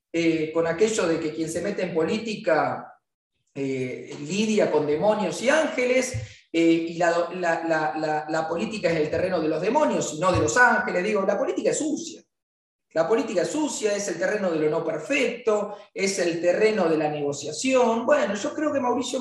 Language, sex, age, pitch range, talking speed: Spanish, male, 30-49, 160-230 Hz, 195 wpm